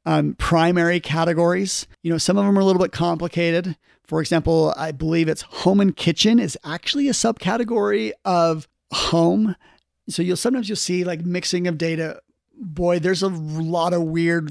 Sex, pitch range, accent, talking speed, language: male, 150-190 Hz, American, 175 wpm, English